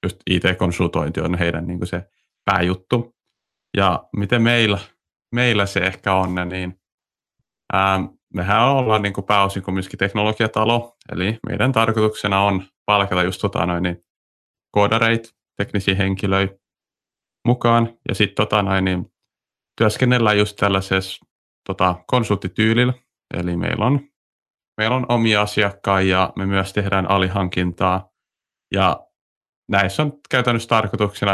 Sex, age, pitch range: male, 30-49, 90-110 Hz